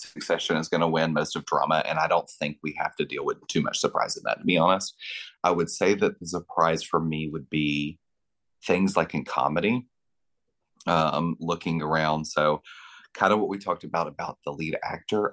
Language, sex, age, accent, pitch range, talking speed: English, male, 30-49, American, 80-95 Hz, 210 wpm